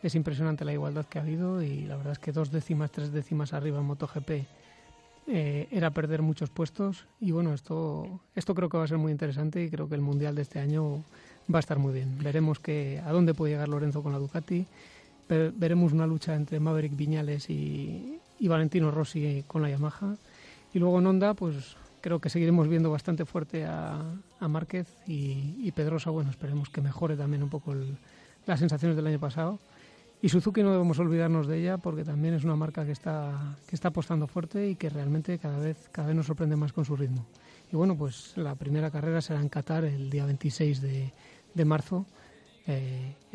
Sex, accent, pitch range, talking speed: male, Spanish, 145-170 Hz, 200 wpm